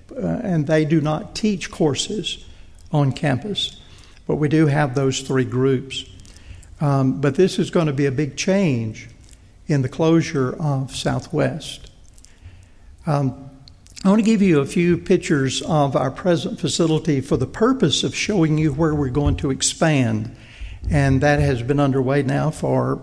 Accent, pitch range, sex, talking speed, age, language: American, 130-150 Hz, male, 160 wpm, 60-79, English